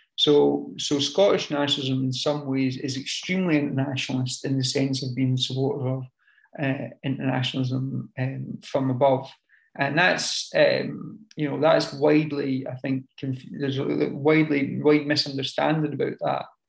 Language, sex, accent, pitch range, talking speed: English, male, British, 135-150 Hz, 135 wpm